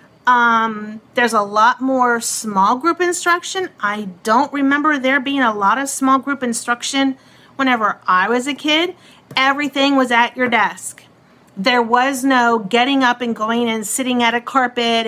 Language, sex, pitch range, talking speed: English, female, 225-270 Hz, 165 wpm